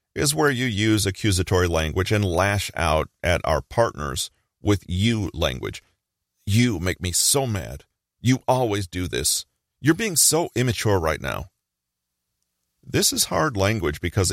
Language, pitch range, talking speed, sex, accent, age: English, 85-110 Hz, 145 wpm, male, American, 40-59